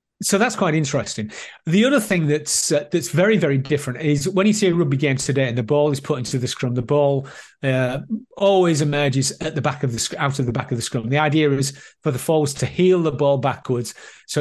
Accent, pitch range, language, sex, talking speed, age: British, 130-160 Hz, English, male, 245 wpm, 40-59